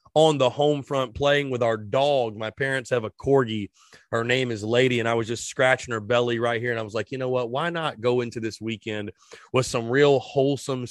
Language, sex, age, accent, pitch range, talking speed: English, male, 30-49, American, 120-145 Hz, 235 wpm